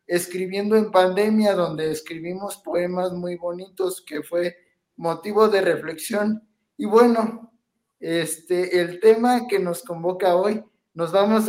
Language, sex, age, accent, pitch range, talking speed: Spanish, male, 20-39, Mexican, 175-205 Hz, 125 wpm